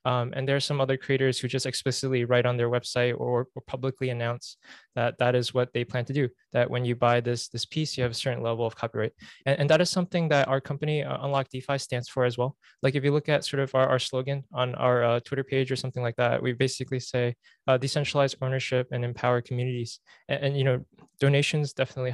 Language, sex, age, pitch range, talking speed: English, male, 20-39, 125-145 Hz, 240 wpm